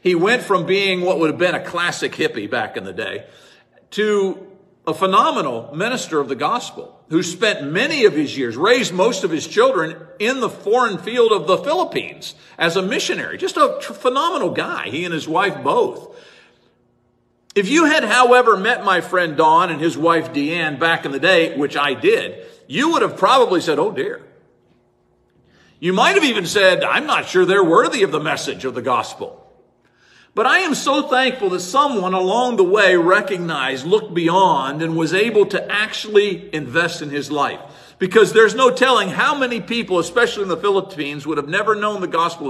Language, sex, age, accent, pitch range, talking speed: English, male, 50-69, American, 160-250 Hz, 190 wpm